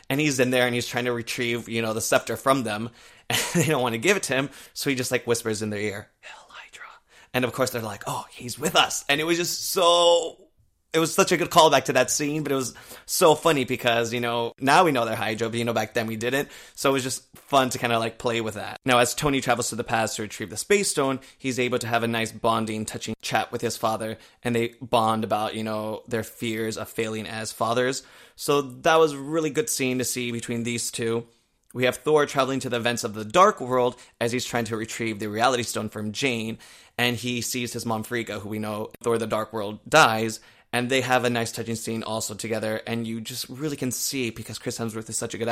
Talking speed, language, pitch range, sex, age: 255 wpm, English, 110-125 Hz, male, 20-39